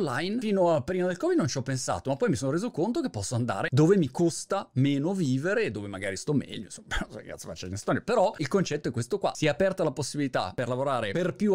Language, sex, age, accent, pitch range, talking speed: Italian, male, 30-49, native, 120-180 Hz, 265 wpm